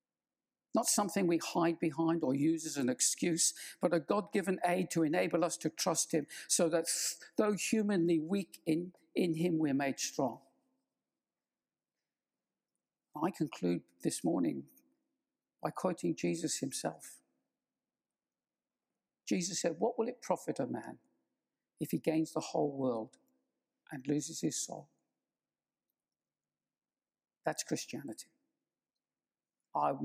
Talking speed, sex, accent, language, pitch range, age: 120 wpm, male, British, English, 145-175 Hz, 60-79